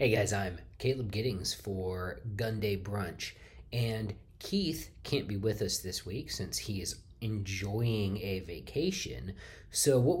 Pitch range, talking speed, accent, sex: 95-120 Hz, 140 wpm, American, male